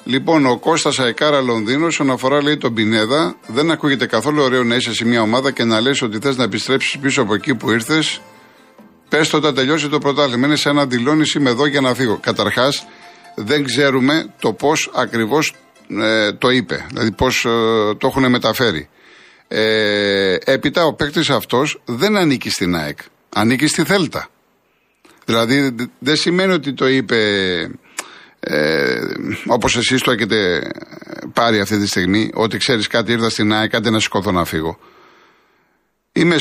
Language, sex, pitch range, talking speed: Greek, male, 110-150 Hz, 155 wpm